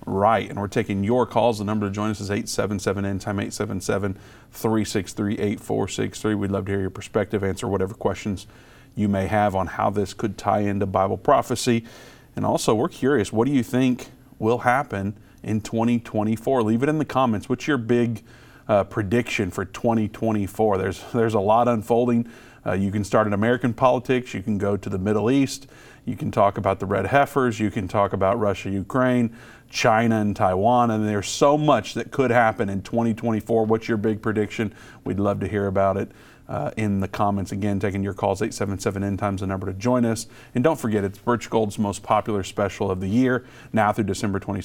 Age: 40-59